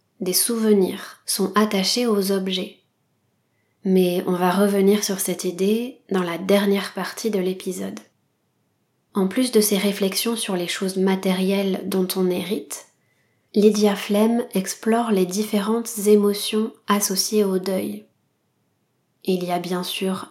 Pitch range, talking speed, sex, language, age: 185-215 Hz, 135 wpm, female, French, 20-39